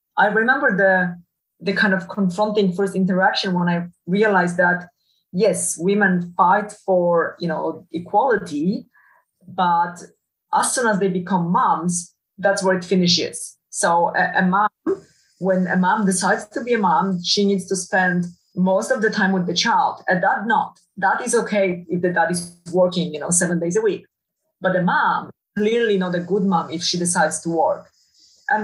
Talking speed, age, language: 180 wpm, 30-49, English